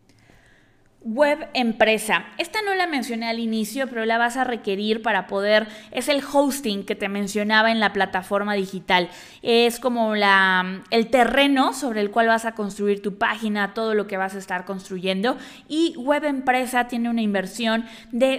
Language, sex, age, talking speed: Spanish, female, 20-39, 165 wpm